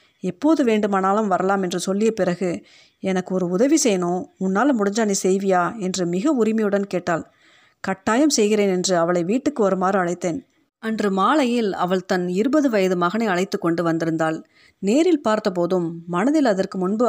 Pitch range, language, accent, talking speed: 185-235 Hz, Tamil, native, 140 wpm